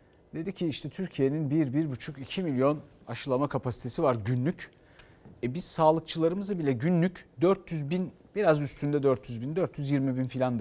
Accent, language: native, Turkish